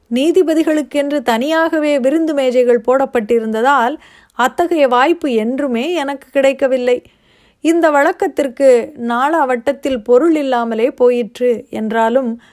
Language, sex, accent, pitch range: Tamil, female, native, 235-285 Hz